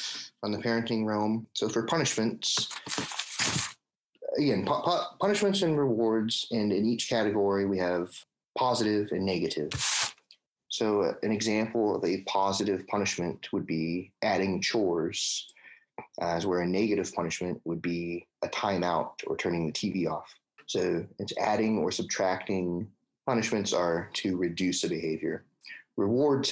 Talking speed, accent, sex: 135 wpm, American, male